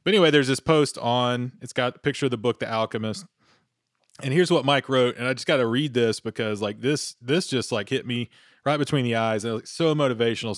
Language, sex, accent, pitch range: English, male, American, 115-145 Hz